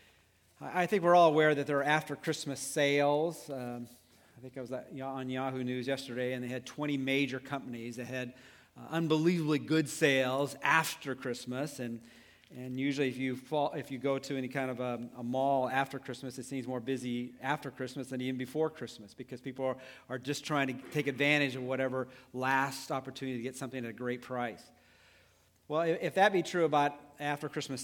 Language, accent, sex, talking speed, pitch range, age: English, American, male, 190 wpm, 125-145 Hz, 40-59